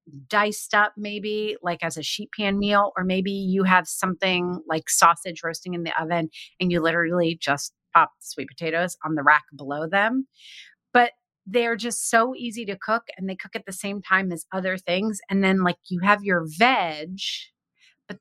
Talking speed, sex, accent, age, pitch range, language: 190 wpm, female, American, 30-49, 160-205 Hz, English